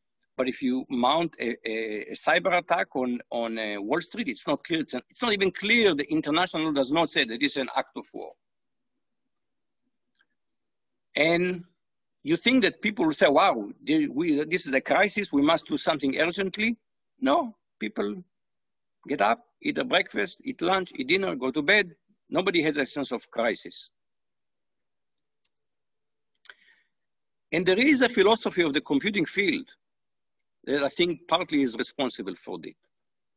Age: 50-69